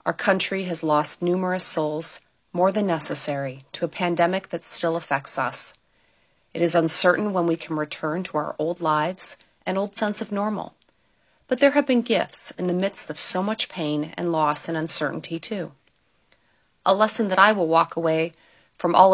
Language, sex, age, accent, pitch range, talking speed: English, female, 40-59, American, 155-195 Hz, 180 wpm